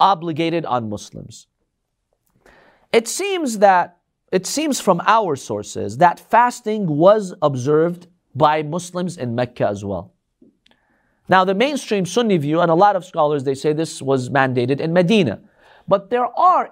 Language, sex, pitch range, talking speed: English, male, 155-230 Hz, 145 wpm